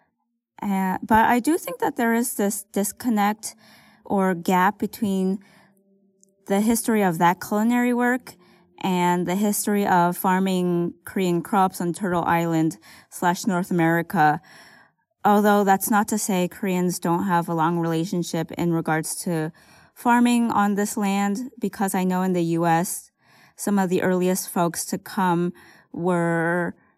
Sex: female